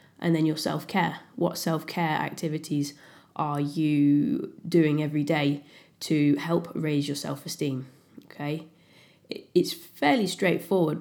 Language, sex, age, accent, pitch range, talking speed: English, female, 20-39, British, 145-165 Hz, 115 wpm